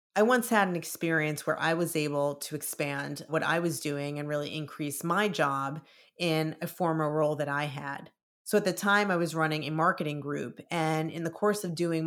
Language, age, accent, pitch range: English, 30-49, American, 150-185 Hz